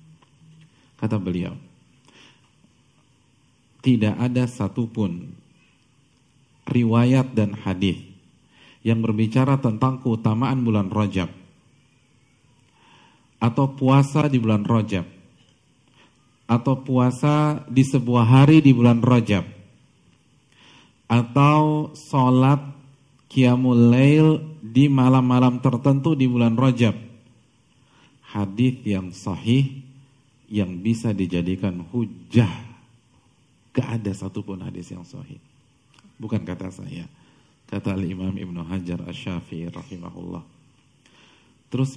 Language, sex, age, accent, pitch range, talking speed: Indonesian, male, 50-69, native, 105-130 Hz, 85 wpm